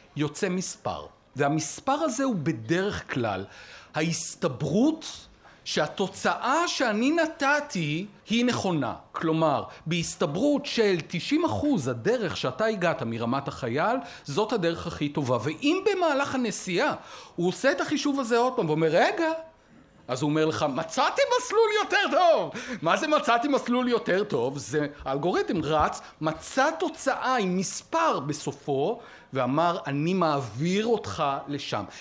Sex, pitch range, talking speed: male, 155-260 Hz, 125 wpm